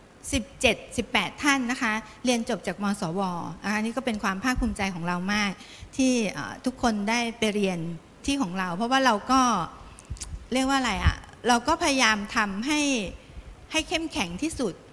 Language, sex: Thai, female